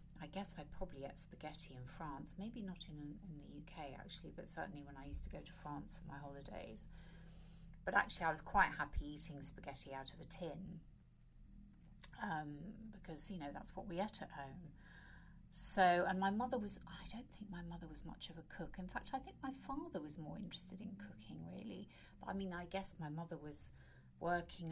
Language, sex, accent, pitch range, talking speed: English, female, British, 150-190 Hz, 210 wpm